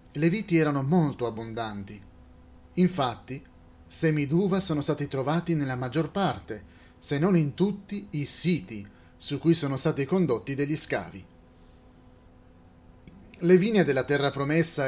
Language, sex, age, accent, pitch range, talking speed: Italian, male, 30-49, native, 115-165 Hz, 130 wpm